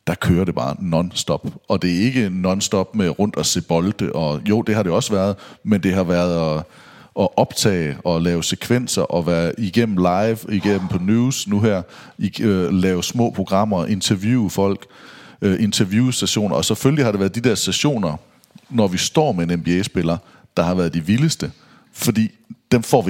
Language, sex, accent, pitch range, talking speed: English, male, Danish, 90-115 Hz, 190 wpm